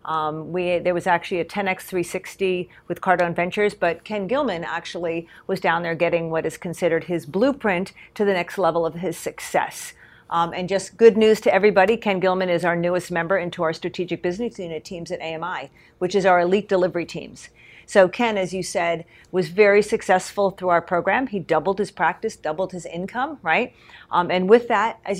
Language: English